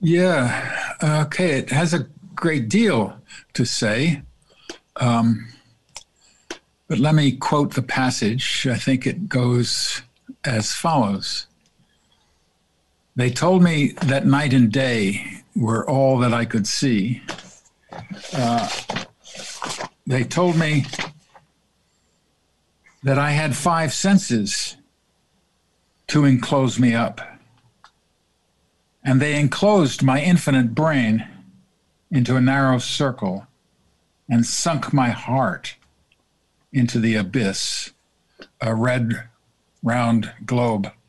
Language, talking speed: English, 100 wpm